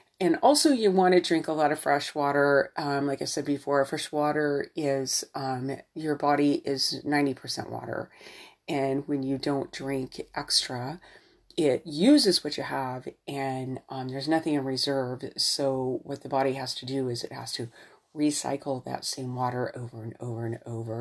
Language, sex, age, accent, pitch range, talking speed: English, female, 40-59, American, 135-180 Hz, 175 wpm